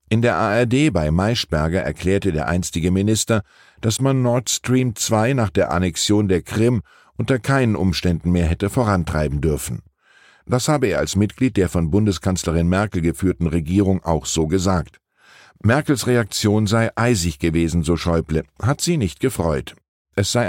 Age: 50-69